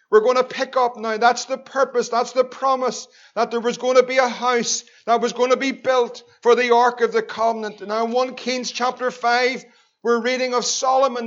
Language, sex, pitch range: English, male, 230-255 Hz